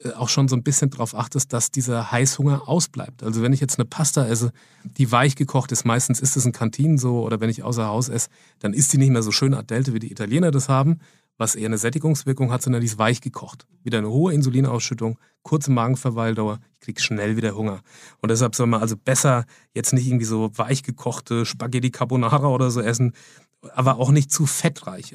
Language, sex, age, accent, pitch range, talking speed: German, male, 30-49, German, 115-135 Hz, 215 wpm